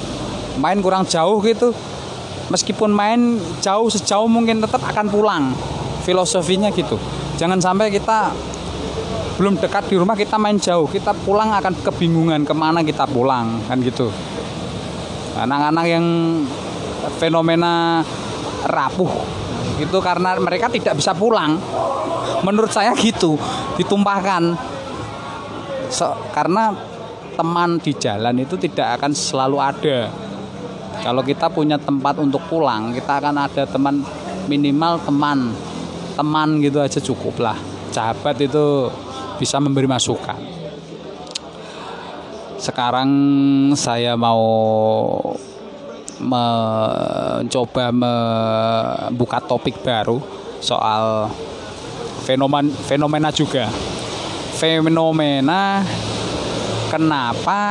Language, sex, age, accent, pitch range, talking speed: Indonesian, male, 20-39, native, 130-185 Hz, 95 wpm